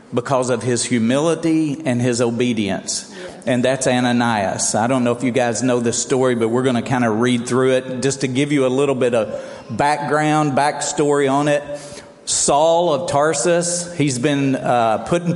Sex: male